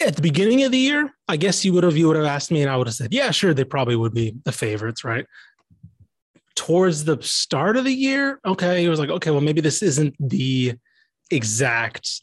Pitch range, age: 135-190 Hz, 20-39